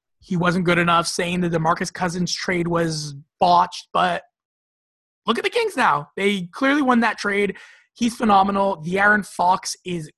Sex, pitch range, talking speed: male, 165-195 Hz, 170 wpm